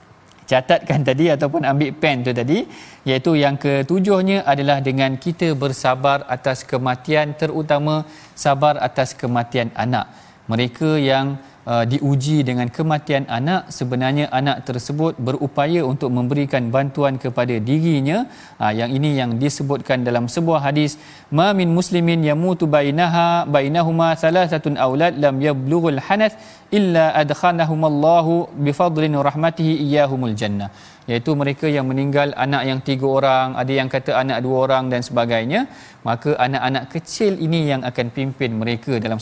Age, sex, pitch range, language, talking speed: 40-59, male, 130-160 Hz, Malayalam, 135 wpm